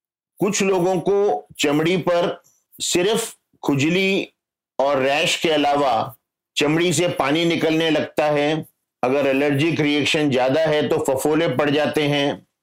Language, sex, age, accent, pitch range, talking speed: Hindi, male, 50-69, native, 130-165 Hz, 130 wpm